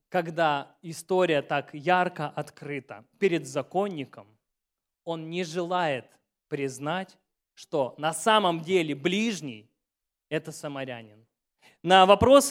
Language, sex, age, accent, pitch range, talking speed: Russian, male, 20-39, native, 140-190 Hz, 95 wpm